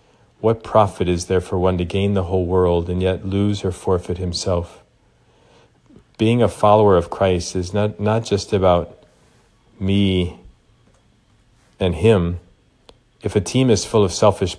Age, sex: 40-59, male